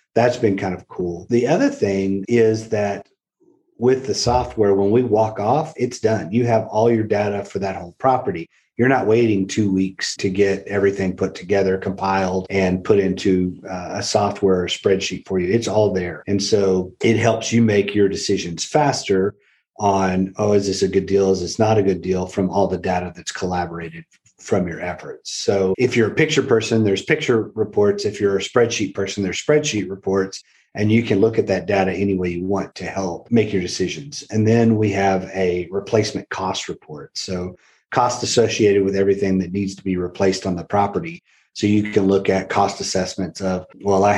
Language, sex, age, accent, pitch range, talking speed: English, male, 30-49, American, 95-105 Hz, 200 wpm